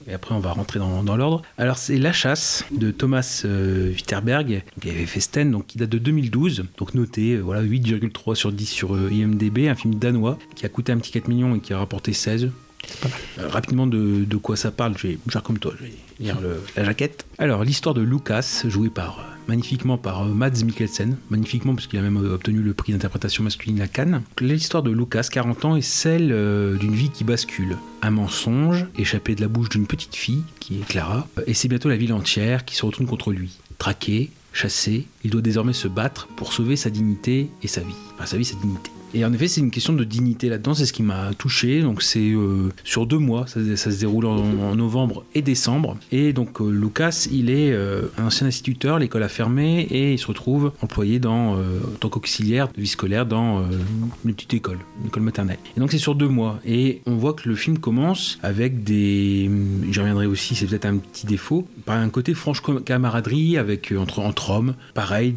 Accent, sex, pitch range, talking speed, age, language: French, male, 105-125 Hz, 225 wpm, 40-59, French